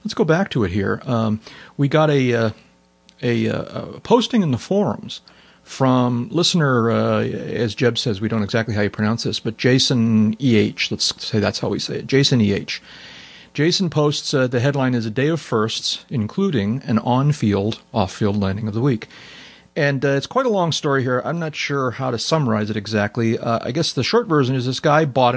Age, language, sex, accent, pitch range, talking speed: 40-59, English, male, American, 110-145 Hz, 205 wpm